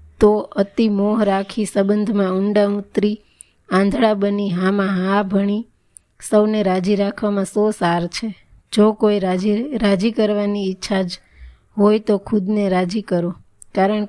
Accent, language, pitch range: native, Gujarati, 190-210 Hz